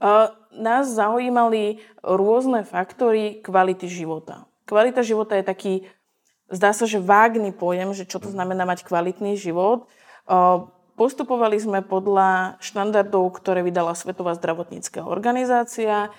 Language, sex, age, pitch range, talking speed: Slovak, female, 20-39, 180-215 Hz, 110 wpm